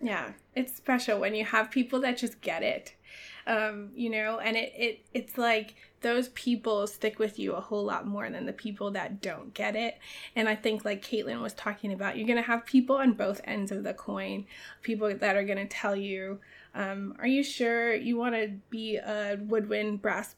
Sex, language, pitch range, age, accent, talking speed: female, English, 205-240 Hz, 20-39, American, 210 wpm